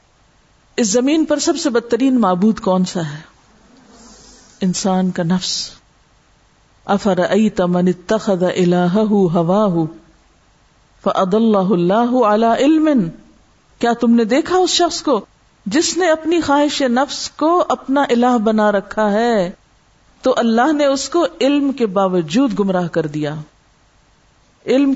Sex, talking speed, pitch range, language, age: female, 120 wpm, 195-280 Hz, Urdu, 50-69